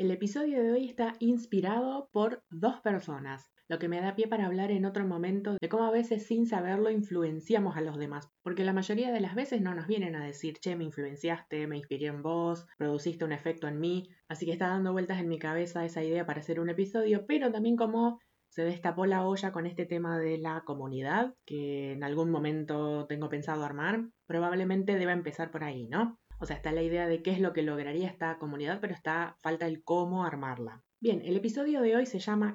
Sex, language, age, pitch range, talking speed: female, Spanish, 20-39, 165-215 Hz, 220 wpm